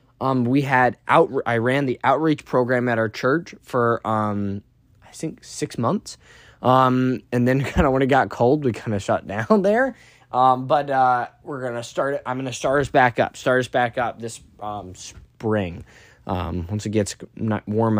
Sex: male